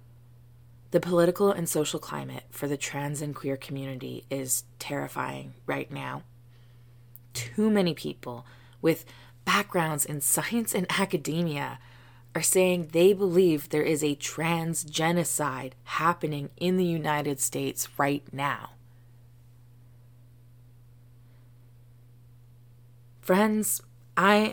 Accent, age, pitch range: American, 20-39, 120-170 Hz